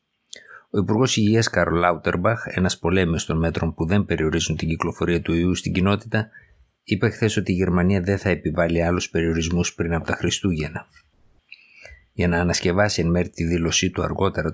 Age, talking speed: 50-69, 170 wpm